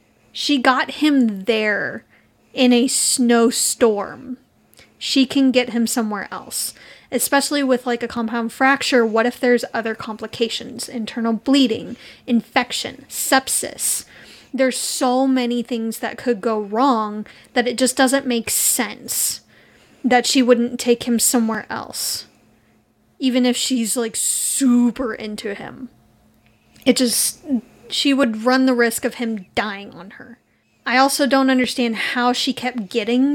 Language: English